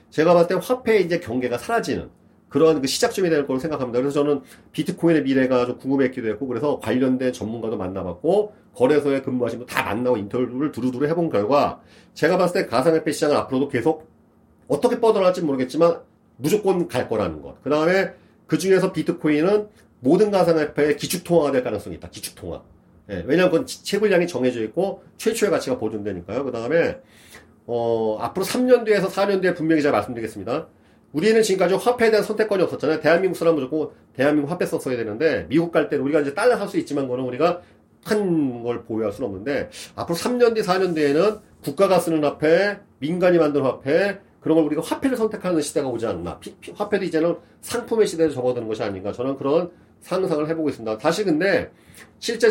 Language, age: Korean, 40-59